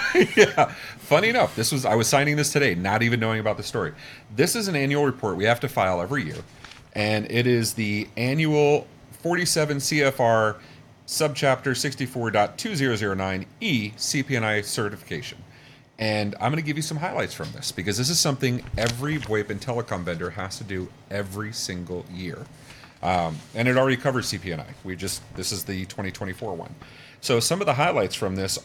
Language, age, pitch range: English, 40-59, 105-140 Hz